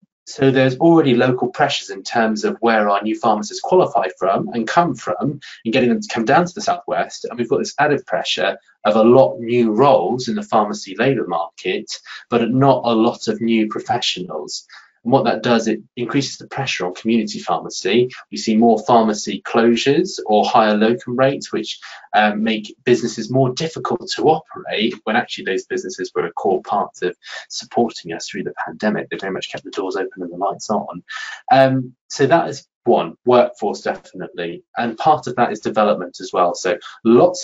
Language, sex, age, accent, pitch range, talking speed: English, male, 20-39, British, 110-140 Hz, 190 wpm